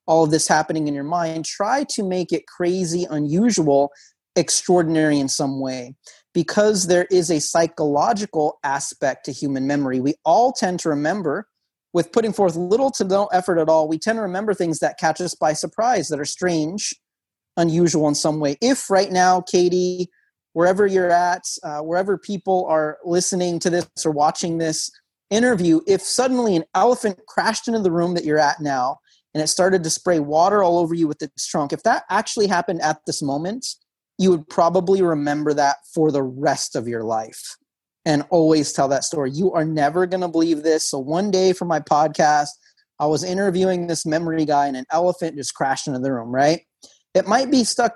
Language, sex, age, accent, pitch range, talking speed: English, male, 30-49, American, 155-185 Hz, 195 wpm